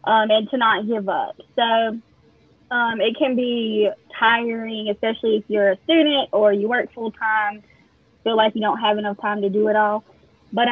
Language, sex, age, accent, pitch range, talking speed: English, female, 10-29, American, 210-245 Hz, 190 wpm